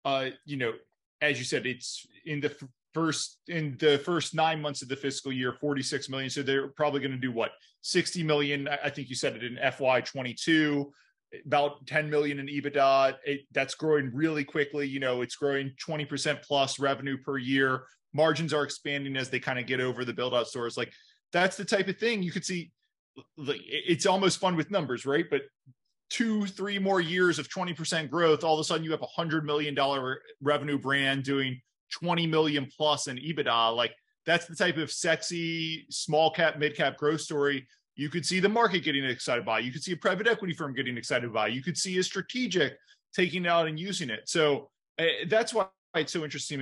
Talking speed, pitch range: 205 wpm, 135-170 Hz